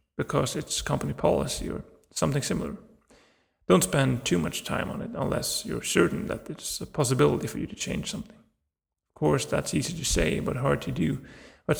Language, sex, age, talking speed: Swedish, male, 30-49, 190 wpm